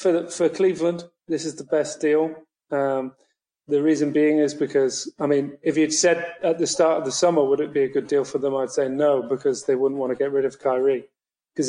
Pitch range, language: 140-165 Hz, English